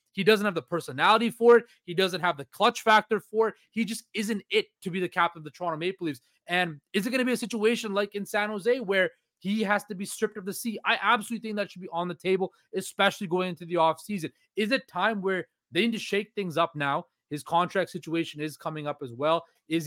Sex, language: male, English